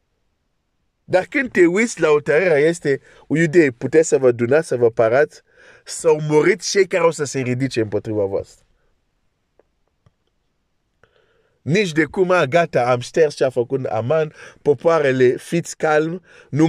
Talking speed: 150 wpm